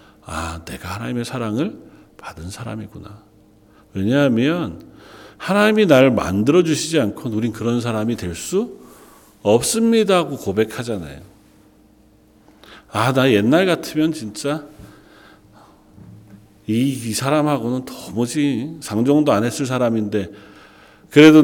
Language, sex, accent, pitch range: Korean, male, native, 105-155 Hz